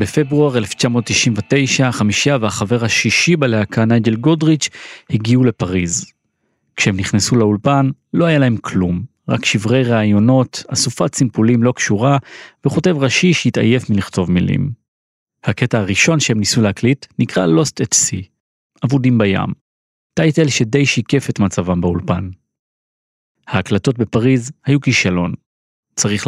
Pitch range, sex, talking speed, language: 105-145 Hz, male, 115 wpm, Hebrew